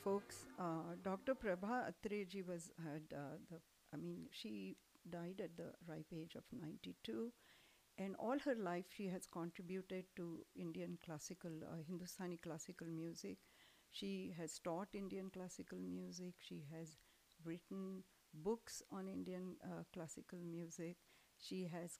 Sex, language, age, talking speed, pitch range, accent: female, English, 60-79, 135 wpm, 165-190 Hz, Indian